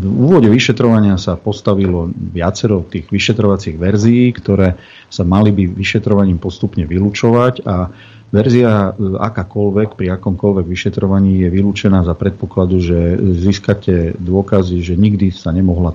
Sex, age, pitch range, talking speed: male, 50-69, 90-105 Hz, 125 wpm